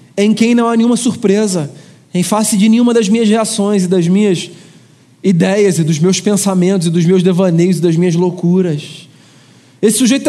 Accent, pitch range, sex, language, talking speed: Brazilian, 180-235 Hz, male, Portuguese, 180 wpm